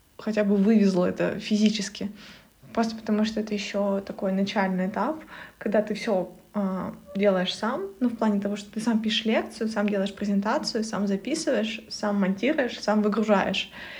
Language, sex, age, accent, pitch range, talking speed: Russian, female, 20-39, native, 210-235 Hz, 160 wpm